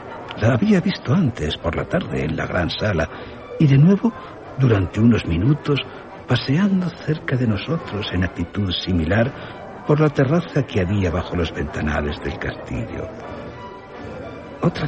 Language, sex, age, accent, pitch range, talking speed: Spanish, male, 60-79, Spanish, 95-145 Hz, 140 wpm